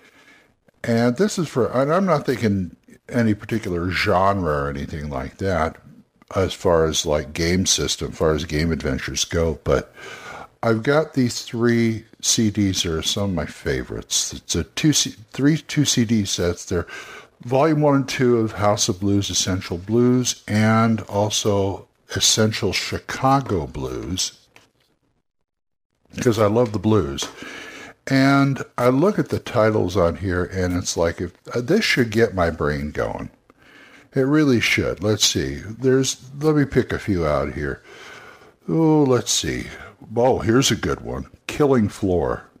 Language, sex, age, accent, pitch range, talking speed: English, male, 60-79, American, 90-125 Hz, 155 wpm